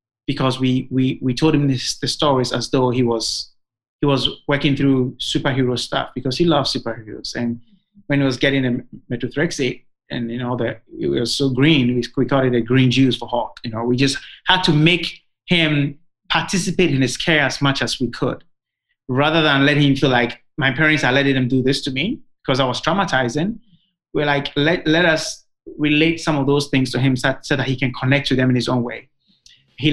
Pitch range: 125-150 Hz